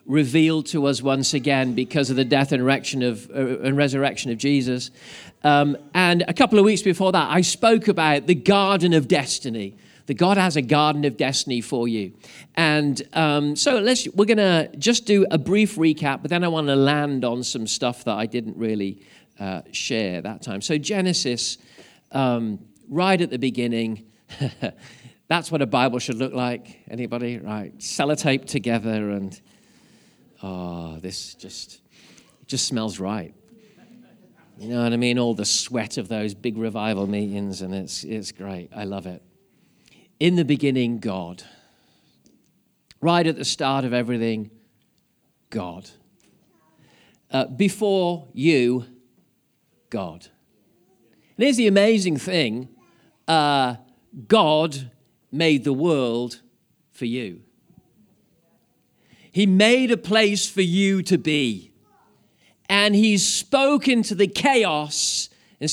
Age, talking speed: 40-59, 140 wpm